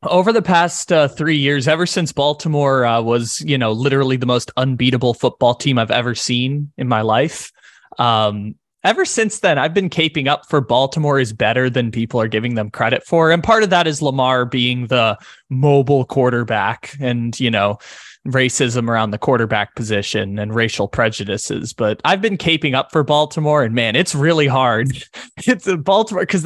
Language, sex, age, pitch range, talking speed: English, male, 20-39, 120-150 Hz, 185 wpm